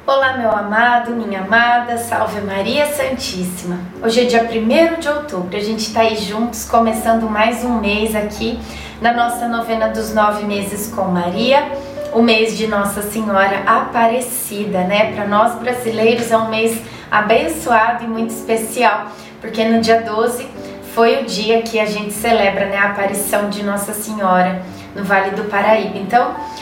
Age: 20-39